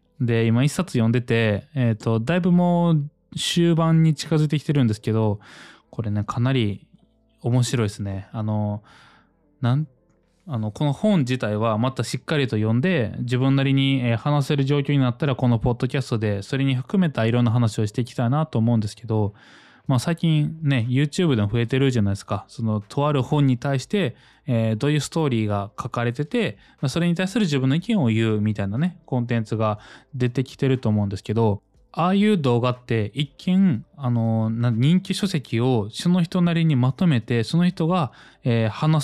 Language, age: Japanese, 20-39